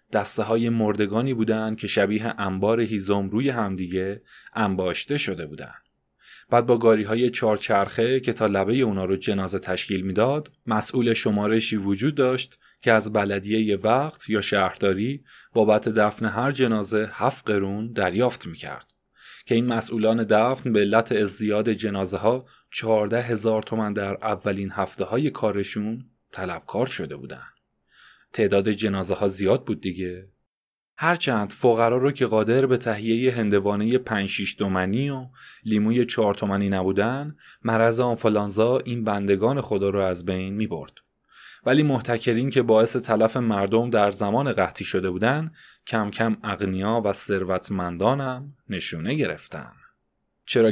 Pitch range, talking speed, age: 100-115 Hz, 135 wpm, 20-39